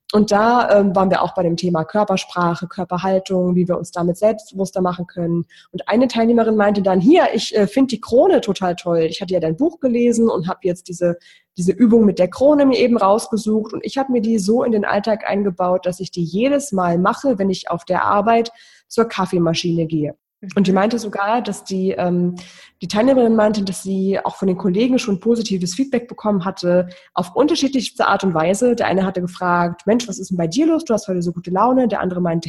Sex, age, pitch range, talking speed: female, 20-39, 180-225 Hz, 220 wpm